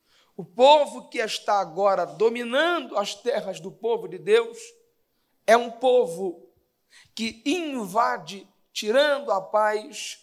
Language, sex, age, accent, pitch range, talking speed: Portuguese, male, 50-69, Brazilian, 205-265 Hz, 115 wpm